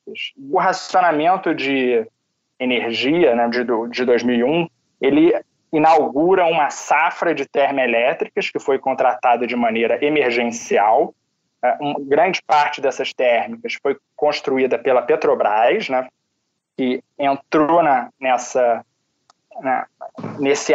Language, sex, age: Portuguese, male, 20-39